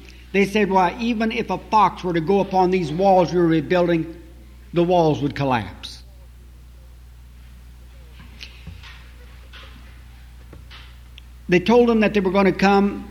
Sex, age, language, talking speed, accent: male, 60-79, English, 140 wpm, American